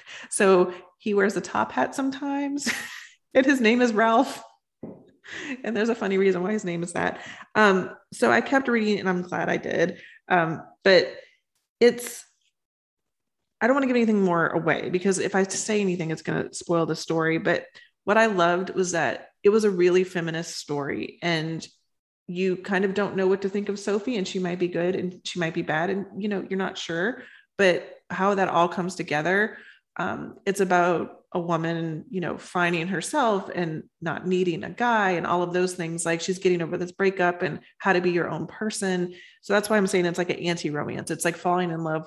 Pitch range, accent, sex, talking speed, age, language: 170-205 Hz, American, female, 205 wpm, 30-49, English